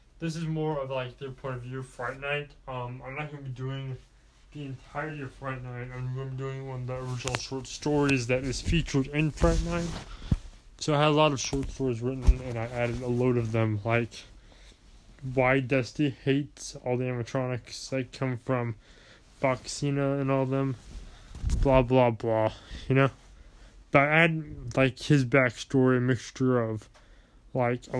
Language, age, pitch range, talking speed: English, 20-39, 115-135 Hz, 180 wpm